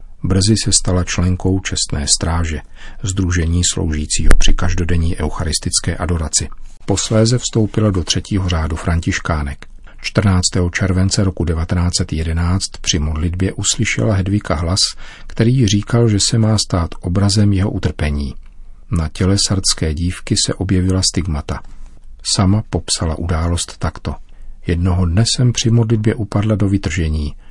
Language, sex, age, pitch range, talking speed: Czech, male, 40-59, 85-100 Hz, 120 wpm